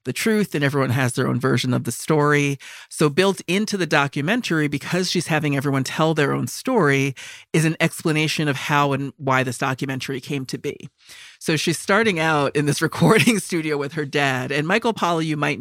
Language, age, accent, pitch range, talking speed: English, 40-59, American, 135-170 Hz, 200 wpm